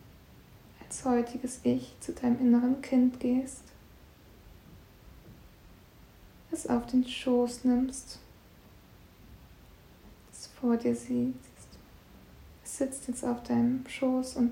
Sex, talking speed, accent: female, 95 wpm, German